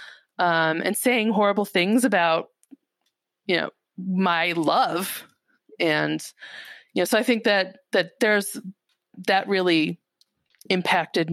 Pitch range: 175-215 Hz